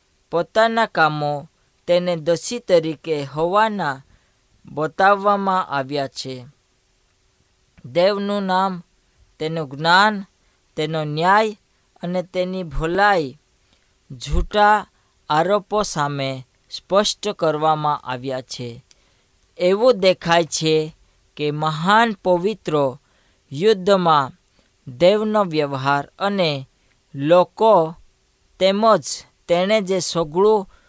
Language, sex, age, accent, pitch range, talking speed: Hindi, female, 20-39, native, 135-190 Hz, 50 wpm